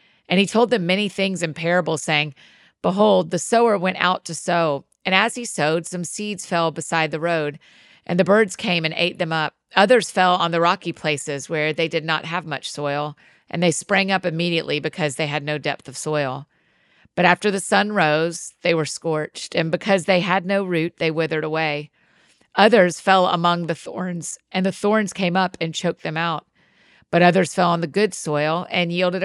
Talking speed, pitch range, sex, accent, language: 205 wpm, 160-195 Hz, female, American, English